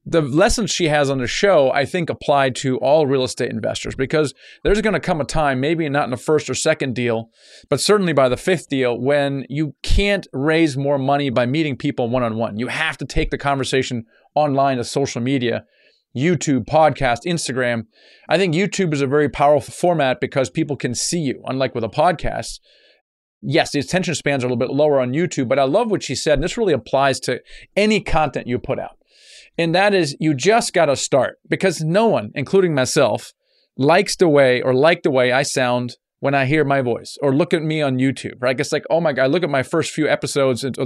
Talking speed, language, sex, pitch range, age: 220 wpm, English, male, 130-160 Hz, 30-49